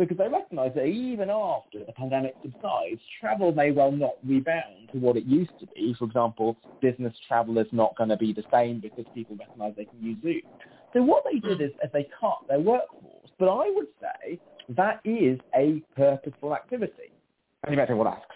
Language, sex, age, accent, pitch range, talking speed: English, male, 30-49, British, 120-170 Hz, 205 wpm